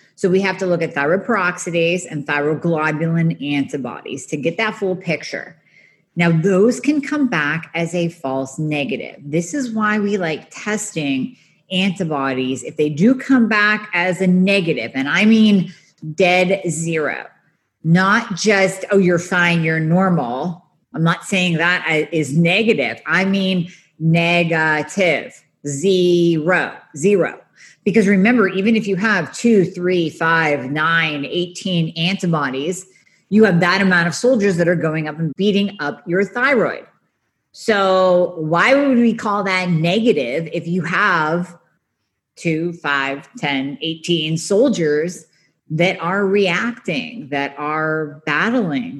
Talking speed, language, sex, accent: 135 wpm, English, female, American